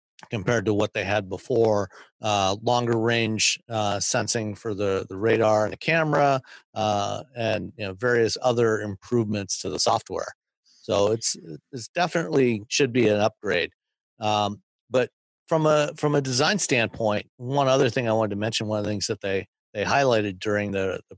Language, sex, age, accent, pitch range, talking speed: English, male, 50-69, American, 105-125 Hz, 175 wpm